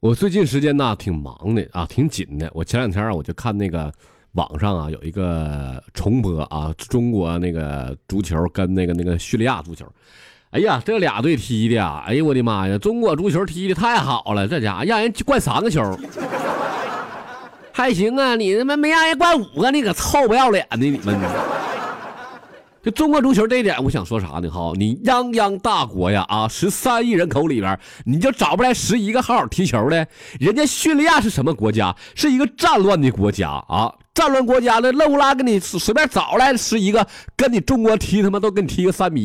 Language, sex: Chinese, male